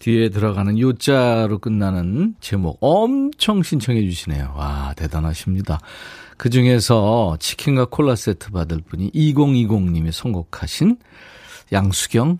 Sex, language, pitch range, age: male, Korean, 95-150 Hz, 40-59